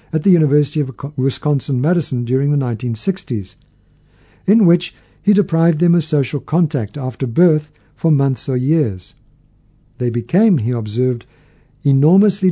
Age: 50-69